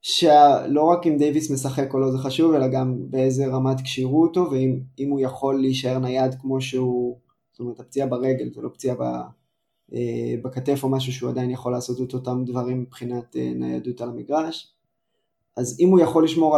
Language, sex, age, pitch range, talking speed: Hebrew, male, 20-39, 125-140 Hz, 185 wpm